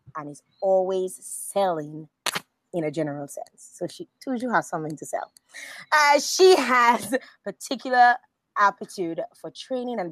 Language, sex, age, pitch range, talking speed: English, female, 30-49, 165-280 Hz, 140 wpm